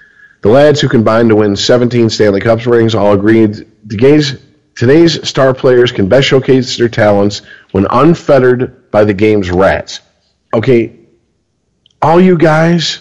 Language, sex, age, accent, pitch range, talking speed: English, male, 40-59, American, 110-150 Hz, 150 wpm